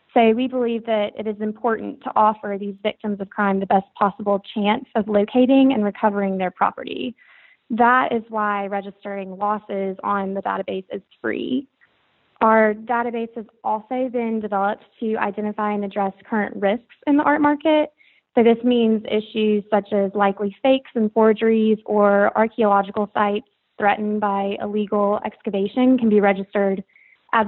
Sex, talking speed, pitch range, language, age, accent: female, 155 wpm, 200-230 Hz, English, 20-39, American